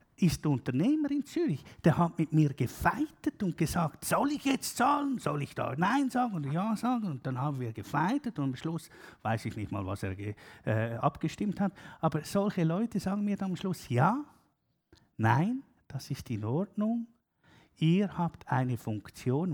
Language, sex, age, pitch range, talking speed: German, male, 50-69, 135-205 Hz, 180 wpm